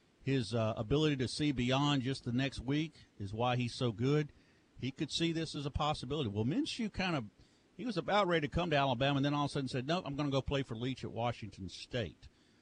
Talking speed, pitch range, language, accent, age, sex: 245 wpm, 115-155 Hz, English, American, 50-69, male